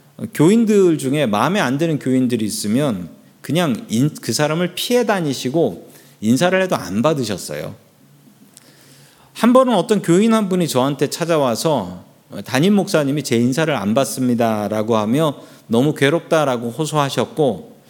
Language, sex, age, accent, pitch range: Korean, male, 40-59, native, 130-180 Hz